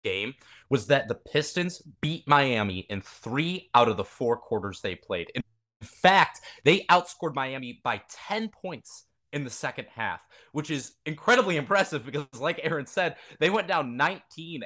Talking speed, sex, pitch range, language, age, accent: 165 wpm, male, 125-165 Hz, English, 20-39, American